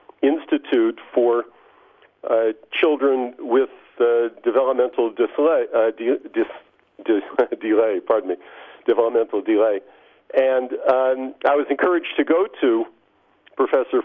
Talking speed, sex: 110 wpm, male